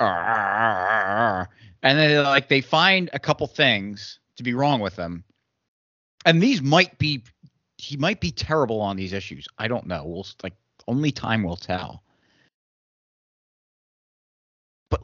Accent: American